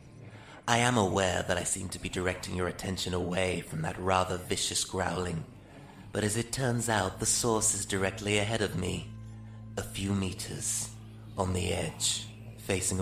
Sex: male